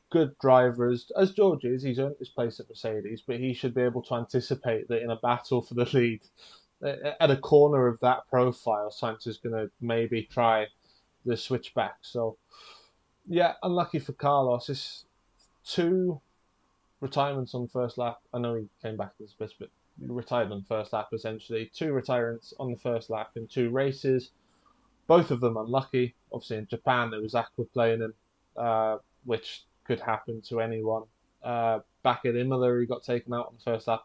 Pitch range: 115-135 Hz